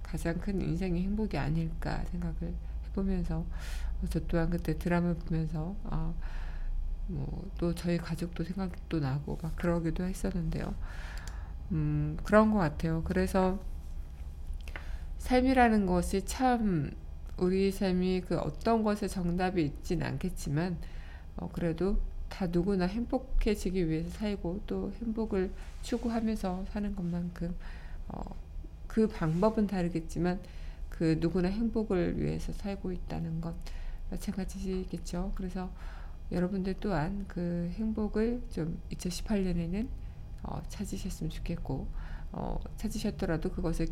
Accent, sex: native, female